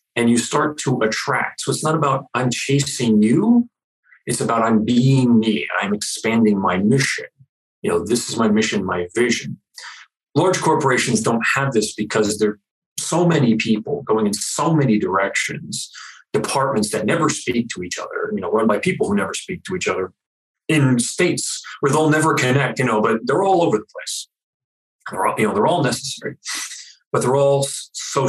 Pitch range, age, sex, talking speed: 110-145 Hz, 40-59, male, 180 wpm